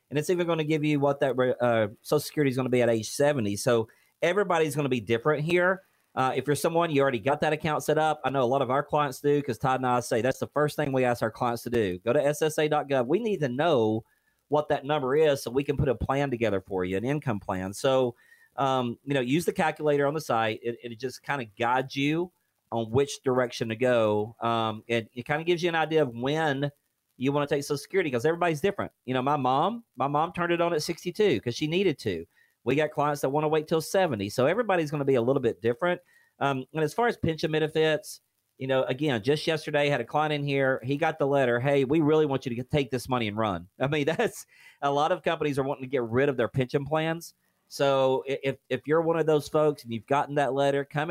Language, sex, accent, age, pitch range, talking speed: English, male, American, 40-59, 125-155 Hz, 260 wpm